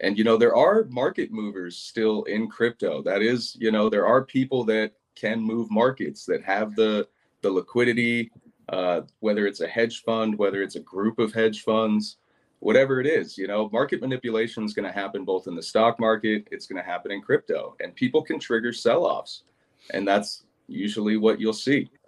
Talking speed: 195 wpm